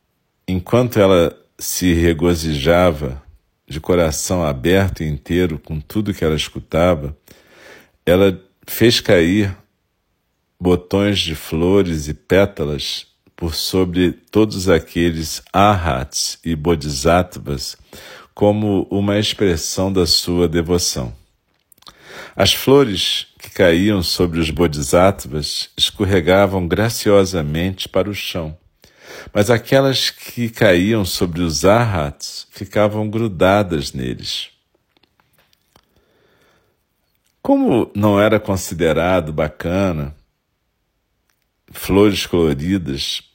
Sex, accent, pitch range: male, Brazilian, 80-100 Hz